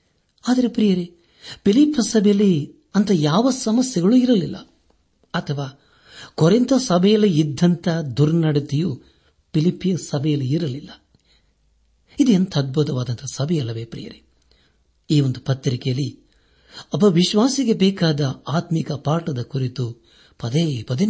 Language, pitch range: Kannada, 120-180 Hz